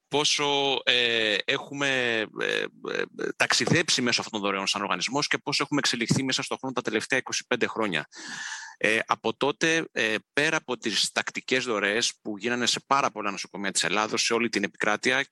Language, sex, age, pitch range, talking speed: Greek, male, 30-49, 105-135 Hz, 170 wpm